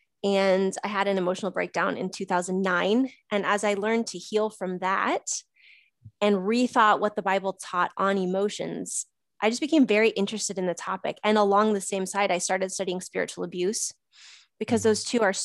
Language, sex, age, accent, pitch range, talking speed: English, female, 20-39, American, 195-225 Hz, 180 wpm